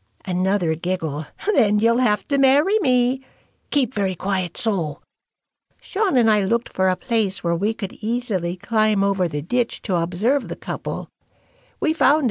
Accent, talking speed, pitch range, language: American, 160 wpm, 190-250 Hz, English